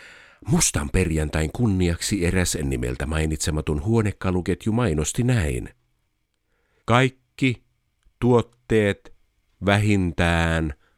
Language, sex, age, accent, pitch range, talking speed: Finnish, male, 50-69, native, 85-115 Hz, 65 wpm